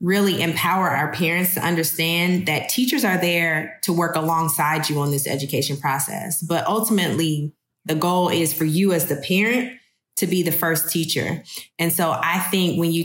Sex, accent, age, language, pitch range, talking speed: female, American, 20-39, English, 155-185 Hz, 180 wpm